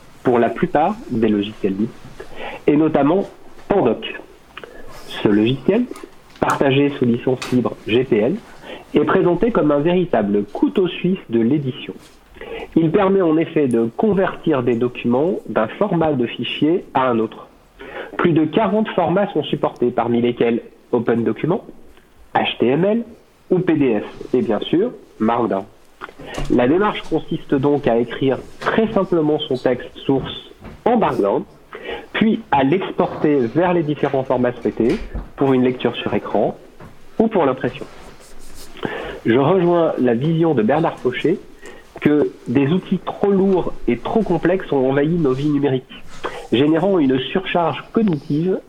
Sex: male